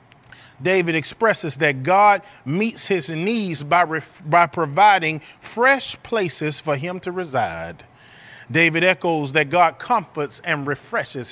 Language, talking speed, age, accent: English, 120 wpm, 30-49, American